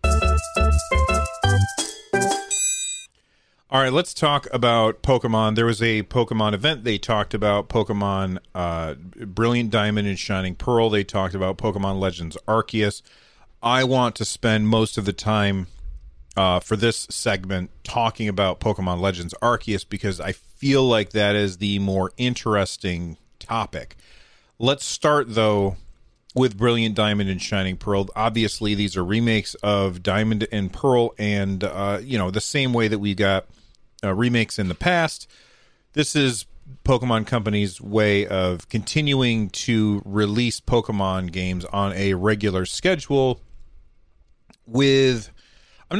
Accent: American